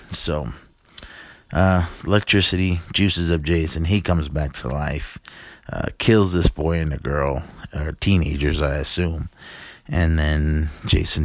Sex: male